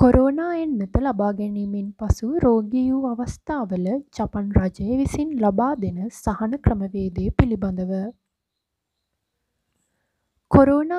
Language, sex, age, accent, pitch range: Japanese, female, 20-39, Indian, 205-250 Hz